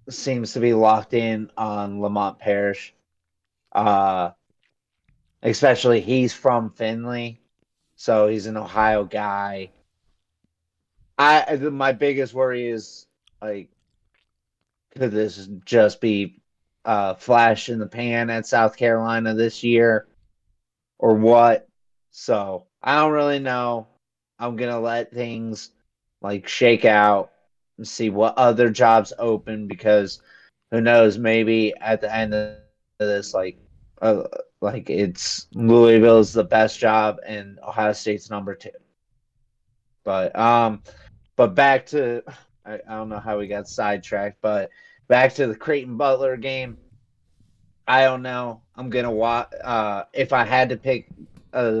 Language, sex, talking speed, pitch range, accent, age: English, male, 135 wpm, 105-120 Hz, American, 30-49